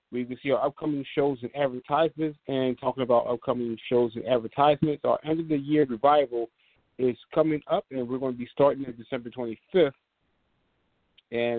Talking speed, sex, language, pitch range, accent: 175 wpm, male, English, 120-140 Hz, American